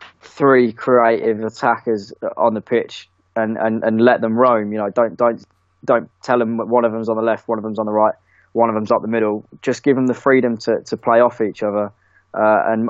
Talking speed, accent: 235 wpm, British